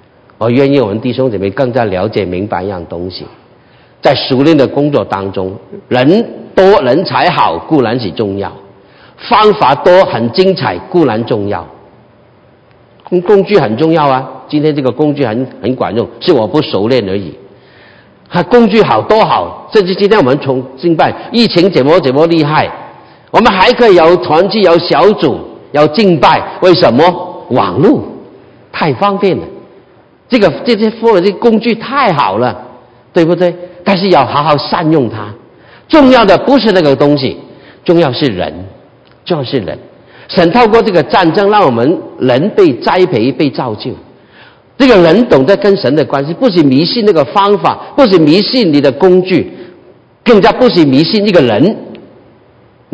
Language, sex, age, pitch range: Chinese, male, 50-69, 125-200 Hz